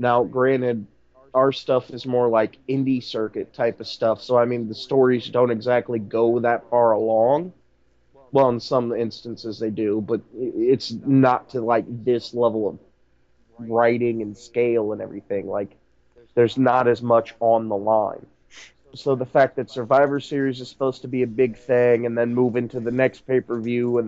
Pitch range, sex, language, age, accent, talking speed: 115-130 Hz, male, English, 30-49, American, 175 wpm